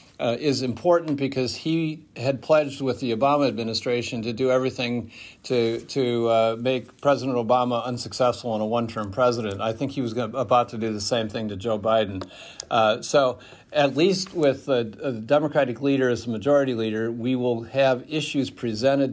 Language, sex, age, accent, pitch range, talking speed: Dutch, male, 50-69, American, 120-150 Hz, 175 wpm